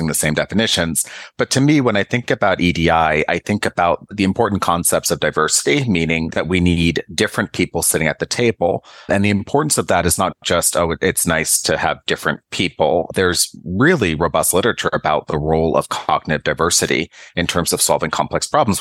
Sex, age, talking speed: male, 30-49, 190 wpm